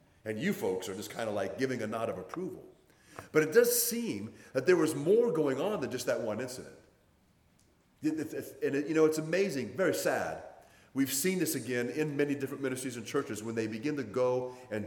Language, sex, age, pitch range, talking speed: English, male, 40-59, 105-135 Hz, 205 wpm